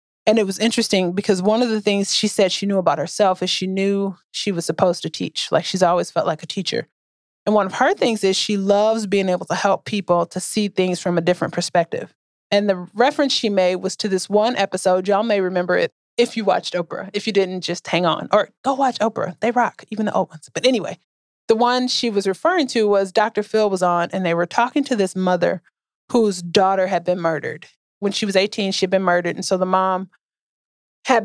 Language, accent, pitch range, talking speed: English, American, 180-210 Hz, 235 wpm